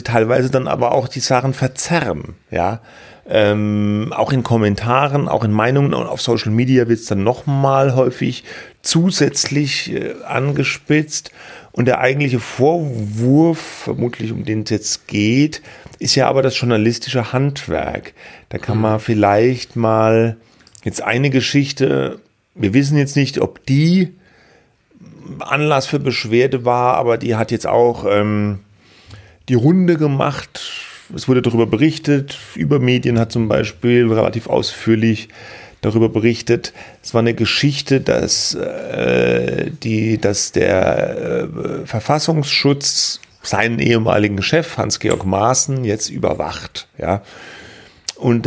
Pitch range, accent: 110-140 Hz, German